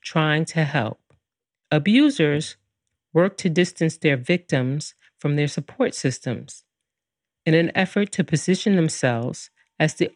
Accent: American